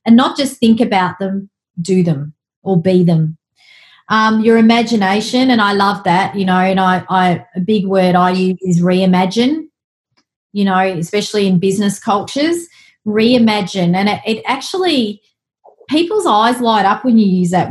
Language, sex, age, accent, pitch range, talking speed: English, female, 30-49, Australian, 185-225 Hz, 160 wpm